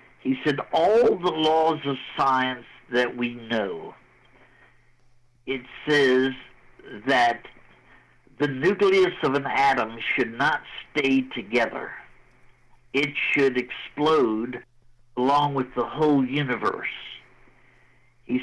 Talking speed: 100 wpm